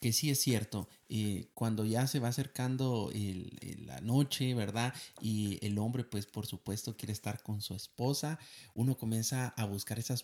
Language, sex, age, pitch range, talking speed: Spanish, male, 30-49, 110-135 Hz, 170 wpm